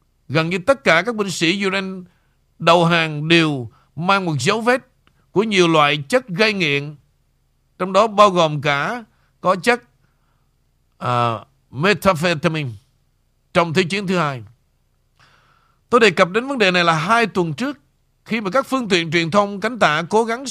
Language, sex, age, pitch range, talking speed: Vietnamese, male, 50-69, 155-210 Hz, 165 wpm